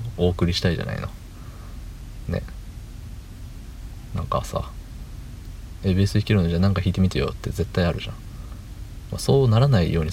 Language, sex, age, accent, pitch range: Japanese, male, 50-69, native, 90-105 Hz